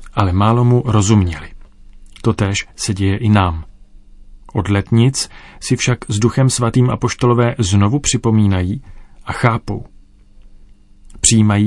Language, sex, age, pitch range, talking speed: Czech, male, 40-59, 100-120 Hz, 115 wpm